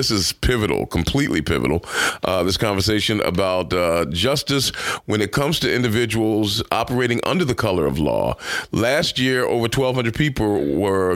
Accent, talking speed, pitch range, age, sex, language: American, 155 wpm, 95-130 Hz, 40-59, male, English